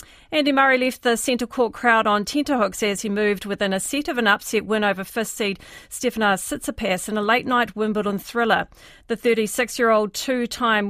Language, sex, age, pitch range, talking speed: English, female, 40-59, 210-250 Hz, 165 wpm